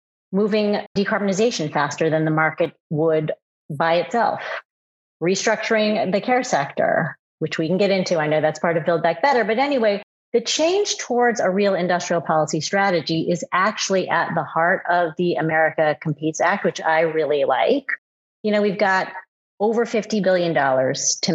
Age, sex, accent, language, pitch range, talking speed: 30-49, female, American, English, 165-210 Hz, 165 wpm